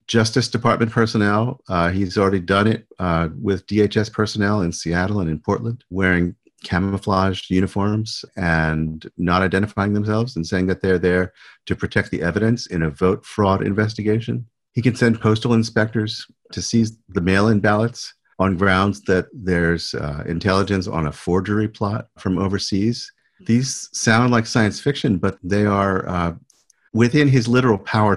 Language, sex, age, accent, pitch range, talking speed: English, male, 50-69, American, 90-110 Hz, 155 wpm